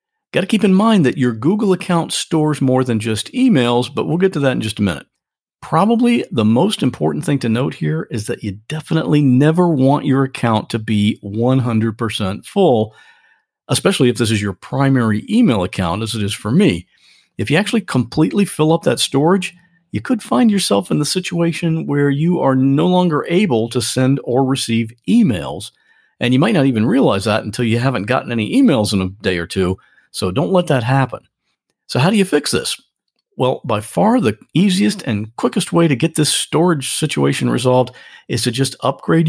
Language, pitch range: English, 110-165 Hz